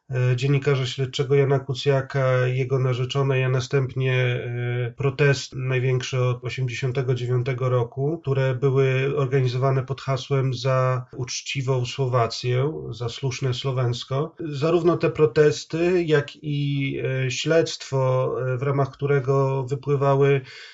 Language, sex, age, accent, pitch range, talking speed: Polish, male, 30-49, native, 130-145 Hz, 100 wpm